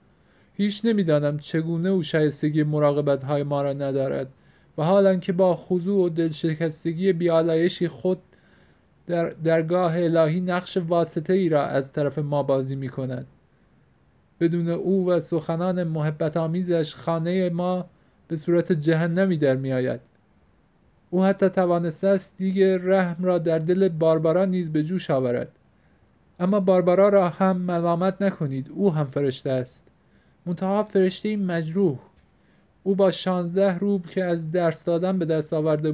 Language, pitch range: Persian, 150-185 Hz